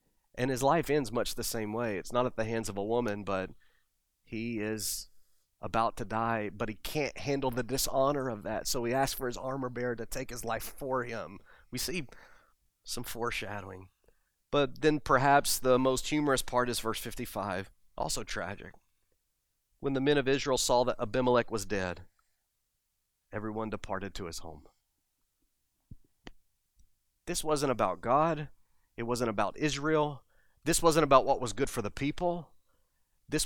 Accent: American